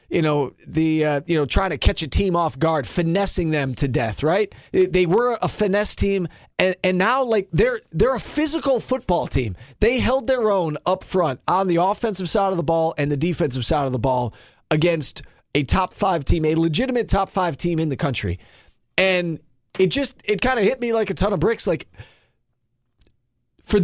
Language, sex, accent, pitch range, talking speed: English, male, American, 145-195 Hz, 205 wpm